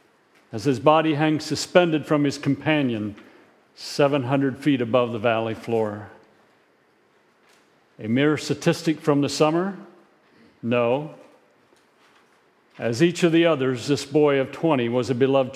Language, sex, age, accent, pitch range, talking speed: English, male, 50-69, American, 120-160 Hz, 125 wpm